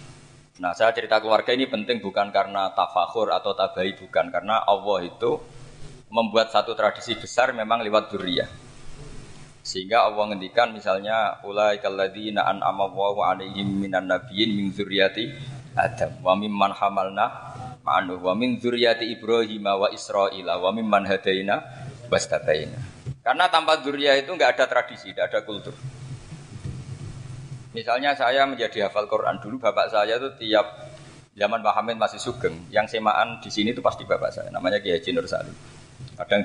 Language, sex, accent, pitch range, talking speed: Indonesian, male, native, 105-135 Hz, 115 wpm